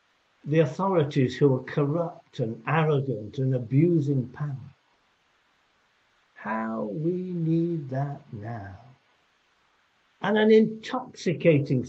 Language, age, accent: English, 60-79, British